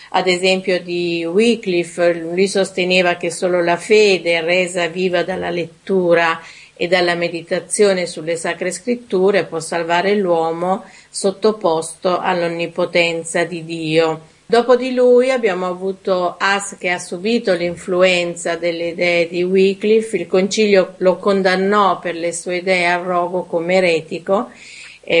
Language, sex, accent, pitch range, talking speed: Italian, female, native, 175-195 Hz, 130 wpm